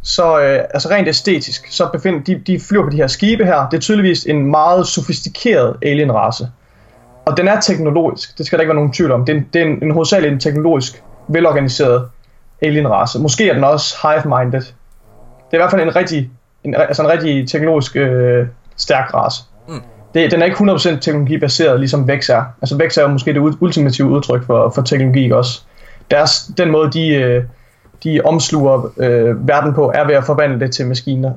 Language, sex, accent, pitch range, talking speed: Danish, male, native, 130-165 Hz, 200 wpm